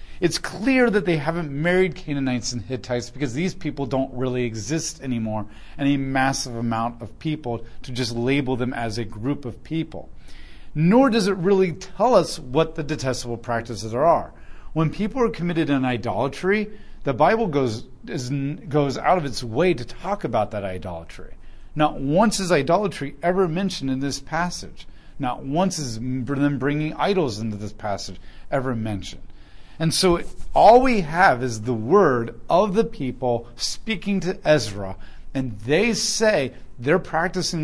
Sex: male